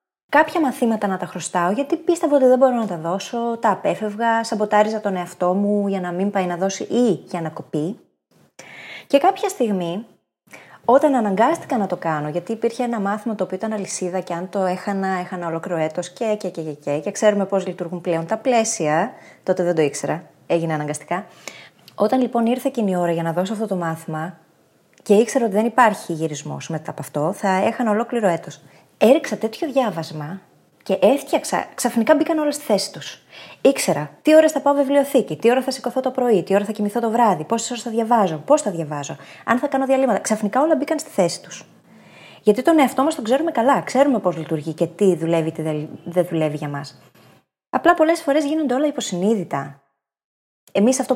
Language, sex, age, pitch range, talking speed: Greek, female, 20-39, 175-245 Hz, 200 wpm